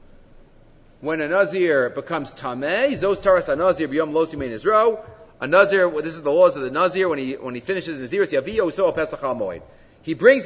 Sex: male